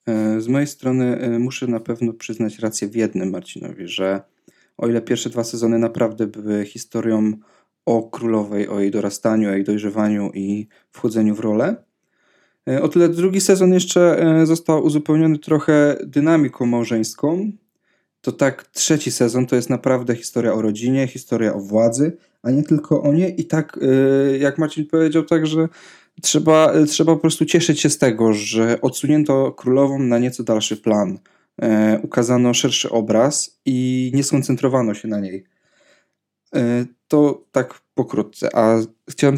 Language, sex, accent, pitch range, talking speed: Polish, male, native, 115-145 Hz, 145 wpm